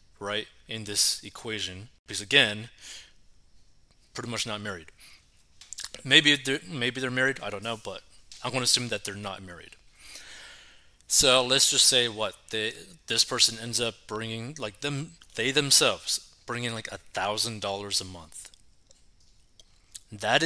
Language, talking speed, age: English, 145 wpm, 20-39